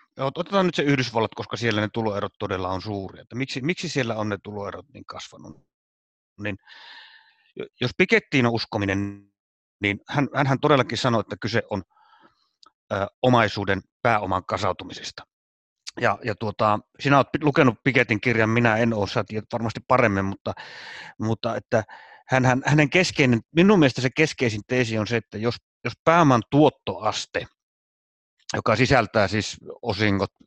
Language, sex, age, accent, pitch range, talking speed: Finnish, male, 30-49, native, 105-140 Hz, 145 wpm